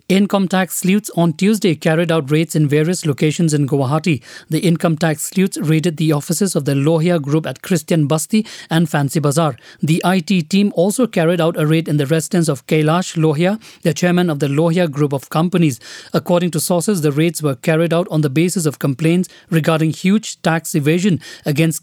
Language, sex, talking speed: English, male, 190 wpm